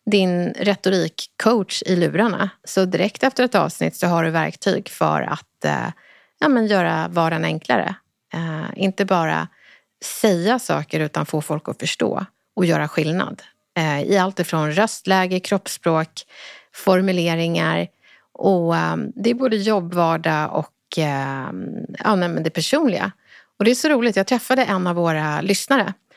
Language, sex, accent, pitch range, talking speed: Swedish, female, native, 165-210 Hz, 140 wpm